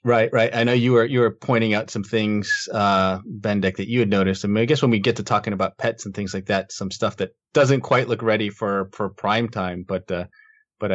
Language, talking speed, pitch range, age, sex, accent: English, 260 wpm, 95-120 Hz, 30-49, male, American